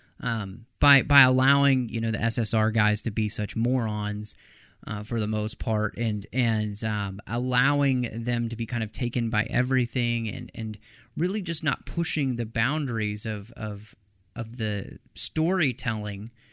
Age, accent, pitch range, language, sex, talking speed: 30-49, American, 110-135 Hz, English, male, 155 wpm